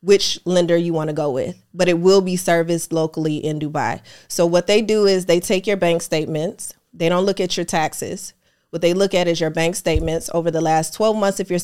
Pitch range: 165-195 Hz